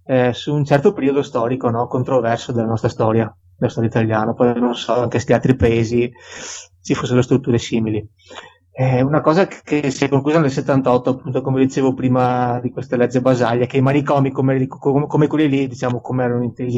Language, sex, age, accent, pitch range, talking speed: Italian, male, 30-49, native, 120-140 Hz, 200 wpm